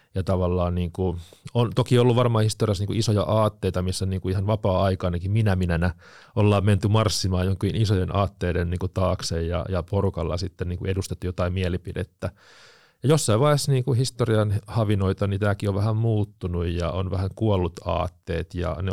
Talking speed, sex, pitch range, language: 135 wpm, male, 90-105 Hz, Finnish